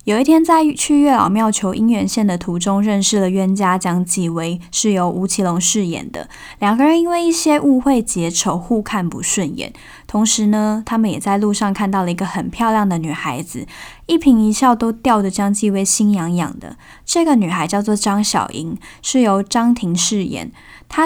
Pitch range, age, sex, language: 190-230 Hz, 10-29, female, Chinese